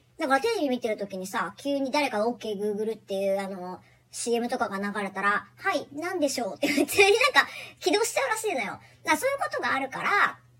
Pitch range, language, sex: 205-320 Hz, Japanese, male